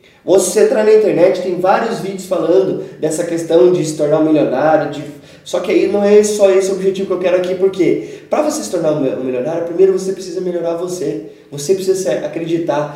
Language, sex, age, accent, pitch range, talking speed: Portuguese, male, 20-39, Brazilian, 155-195 Hz, 205 wpm